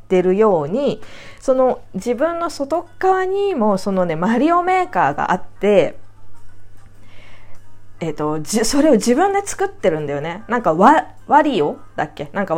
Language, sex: Japanese, female